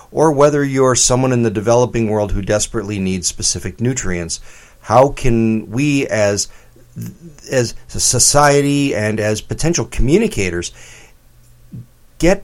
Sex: male